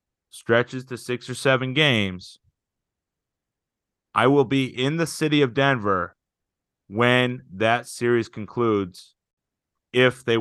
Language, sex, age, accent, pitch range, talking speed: English, male, 30-49, American, 100-120 Hz, 115 wpm